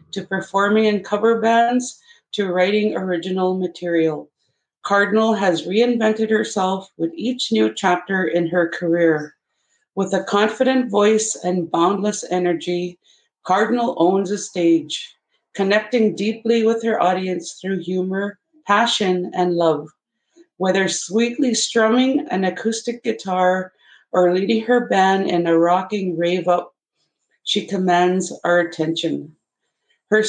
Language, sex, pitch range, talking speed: English, female, 175-215 Hz, 120 wpm